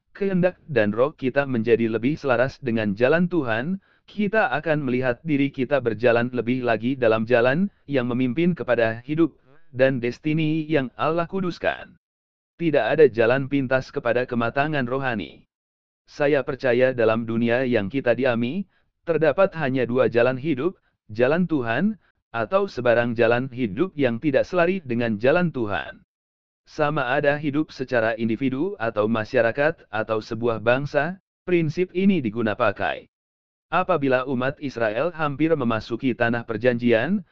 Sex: male